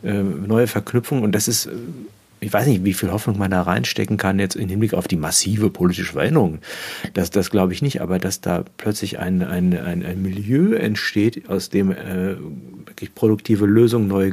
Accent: German